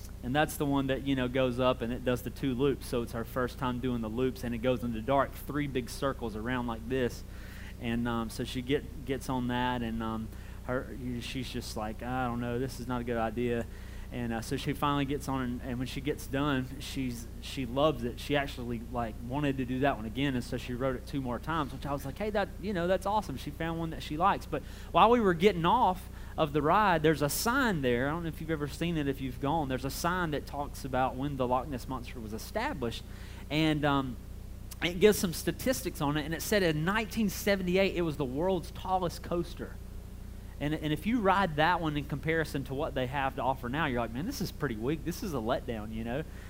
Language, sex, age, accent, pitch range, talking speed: English, male, 30-49, American, 120-165 Hz, 250 wpm